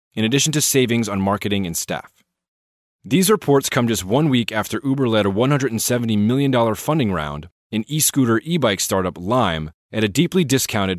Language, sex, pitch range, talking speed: English, male, 95-120 Hz, 170 wpm